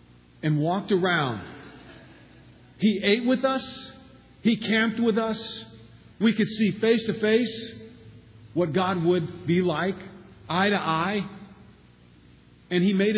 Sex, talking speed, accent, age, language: male, 130 wpm, American, 50-69, English